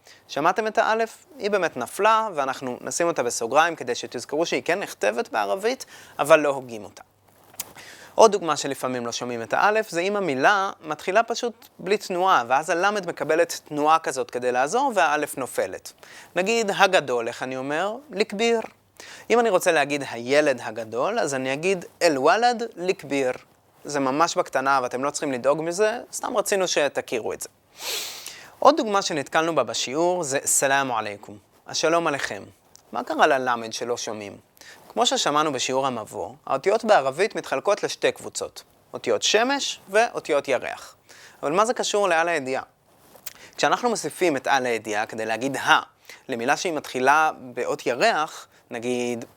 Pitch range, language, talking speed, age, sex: 135-215 Hz, Hebrew, 150 wpm, 20-39, male